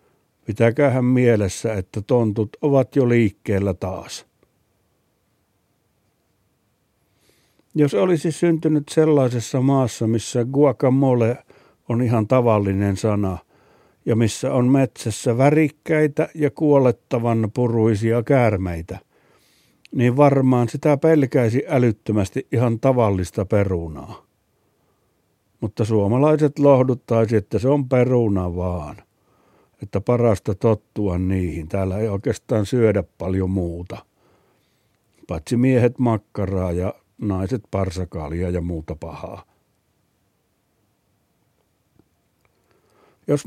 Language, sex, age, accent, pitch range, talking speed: Finnish, male, 60-79, native, 100-135 Hz, 90 wpm